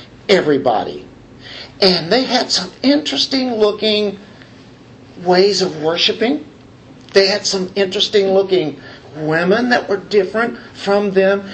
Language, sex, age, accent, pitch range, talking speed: English, male, 50-69, American, 160-230 Hz, 110 wpm